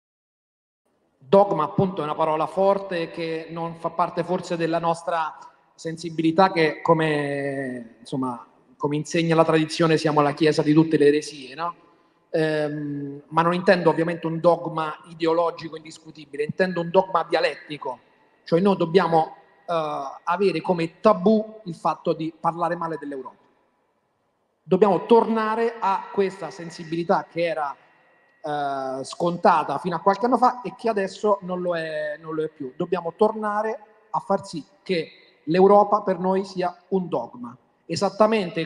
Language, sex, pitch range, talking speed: Italian, male, 155-195 Hz, 145 wpm